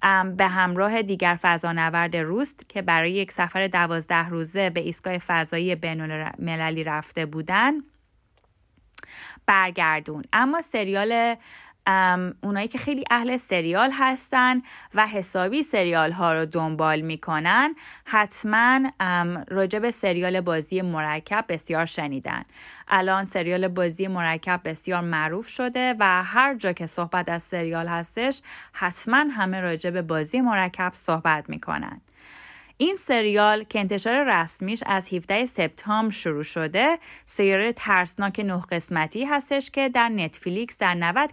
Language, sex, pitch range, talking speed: Persian, female, 170-230 Hz, 120 wpm